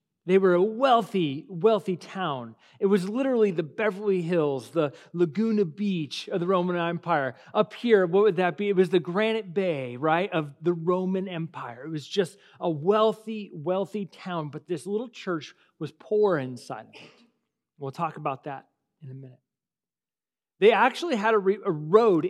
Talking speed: 165 wpm